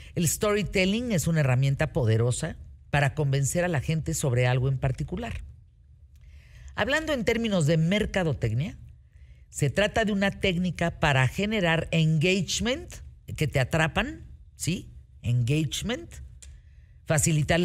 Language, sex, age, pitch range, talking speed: Spanish, female, 50-69, 115-185 Hz, 115 wpm